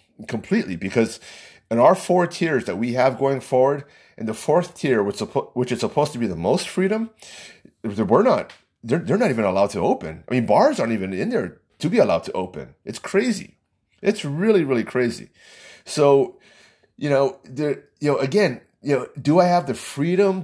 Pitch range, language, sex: 120-185 Hz, English, male